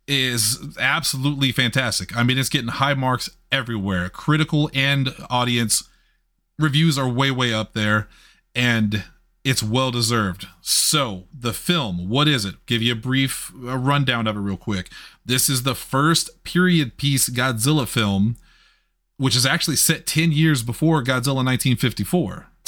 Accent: American